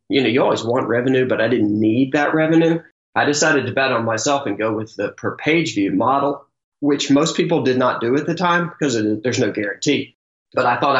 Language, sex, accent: English, male, American